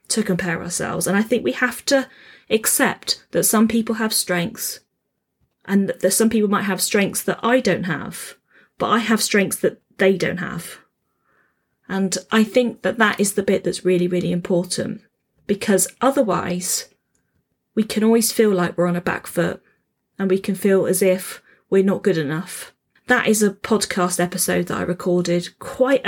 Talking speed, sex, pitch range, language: 175 wpm, female, 180-215 Hz, English